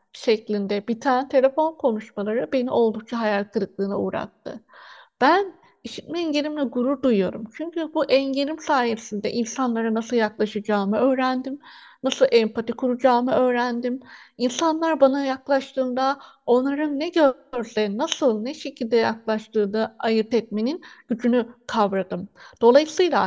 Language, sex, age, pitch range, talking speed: Turkish, female, 60-79, 225-290 Hz, 110 wpm